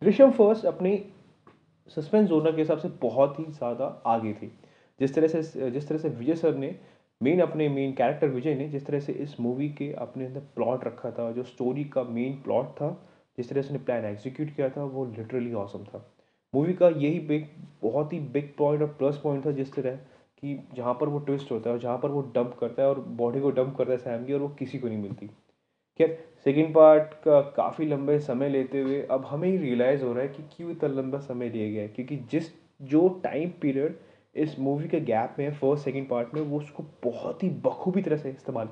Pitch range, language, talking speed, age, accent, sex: 125-155 Hz, Hindi, 220 wpm, 20-39, native, male